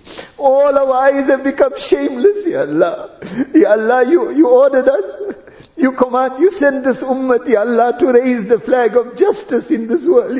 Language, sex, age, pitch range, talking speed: English, male, 50-69, 235-325 Hz, 180 wpm